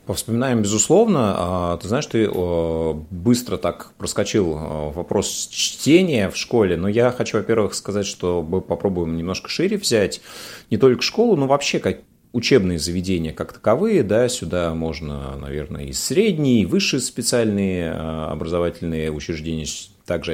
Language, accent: Russian, native